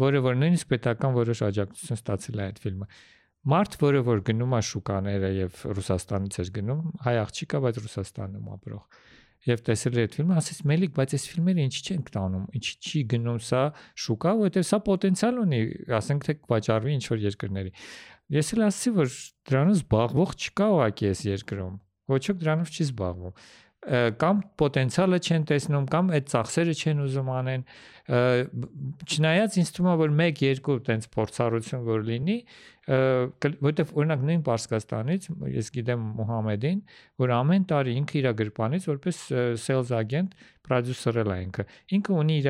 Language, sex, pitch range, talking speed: English, male, 110-155 Hz, 130 wpm